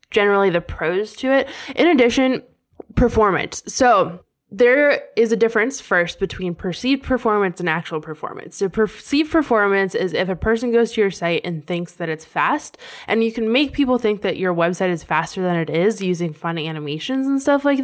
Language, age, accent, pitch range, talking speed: English, 10-29, American, 165-230 Hz, 190 wpm